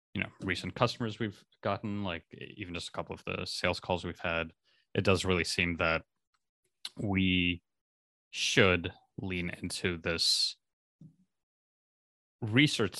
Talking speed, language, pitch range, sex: 130 wpm, English, 85-100 Hz, male